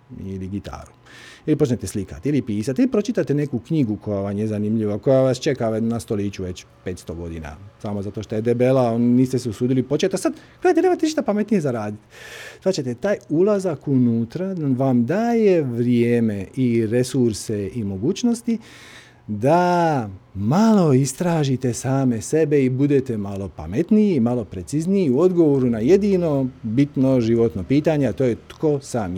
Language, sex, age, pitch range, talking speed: Croatian, male, 40-59, 110-165 Hz, 155 wpm